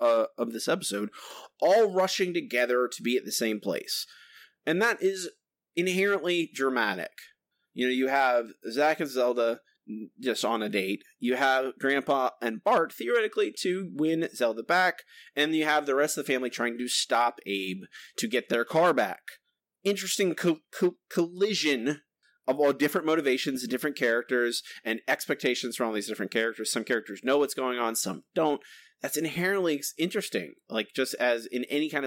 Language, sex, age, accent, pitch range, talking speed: English, male, 30-49, American, 125-195 Hz, 165 wpm